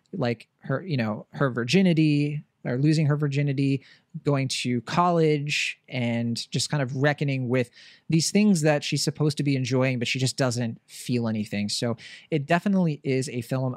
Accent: American